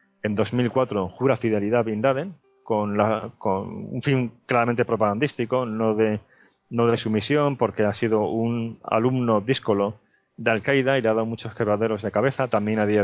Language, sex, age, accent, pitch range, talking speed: Spanish, male, 30-49, Spanish, 105-125 Hz, 175 wpm